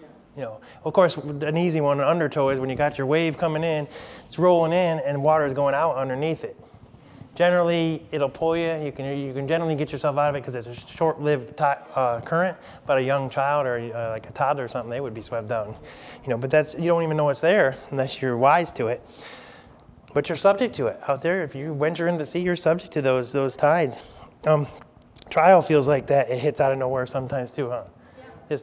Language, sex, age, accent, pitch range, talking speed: English, male, 20-39, American, 130-160 Hz, 235 wpm